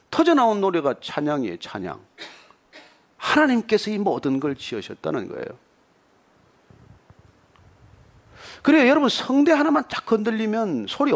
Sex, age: male, 40-59